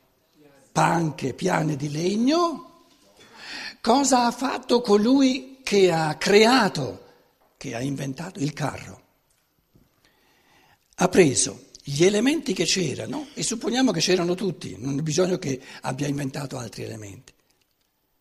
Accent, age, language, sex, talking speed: native, 60-79, Italian, male, 115 wpm